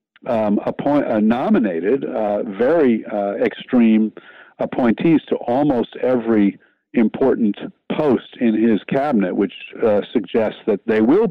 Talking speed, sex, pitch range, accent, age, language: 120 wpm, male, 110-165 Hz, American, 50-69, English